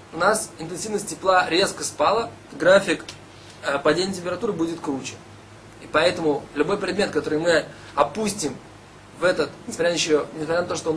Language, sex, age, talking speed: Russian, male, 20-39, 140 wpm